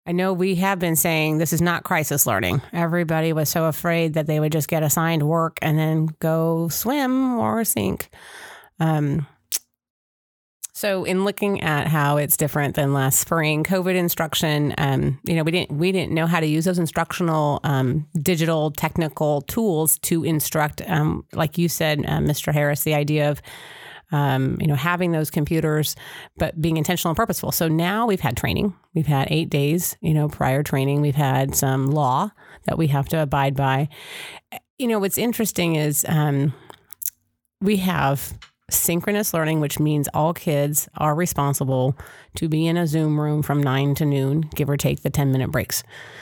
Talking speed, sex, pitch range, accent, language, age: 175 wpm, female, 145-175 Hz, American, English, 30-49